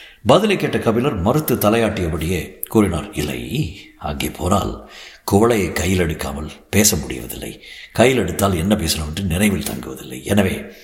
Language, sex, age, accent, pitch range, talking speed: Tamil, male, 60-79, native, 85-130 Hz, 115 wpm